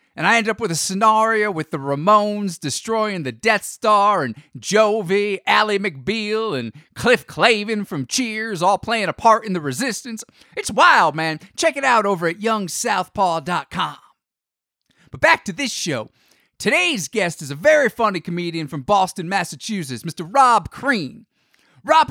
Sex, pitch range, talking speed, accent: male, 165-220 Hz, 155 wpm, American